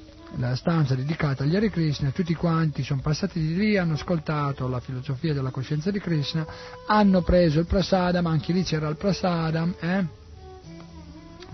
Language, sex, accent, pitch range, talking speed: Italian, male, native, 130-175 Hz, 155 wpm